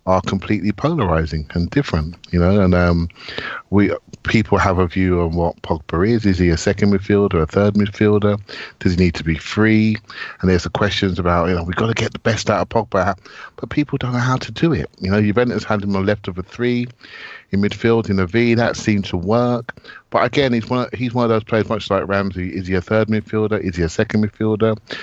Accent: British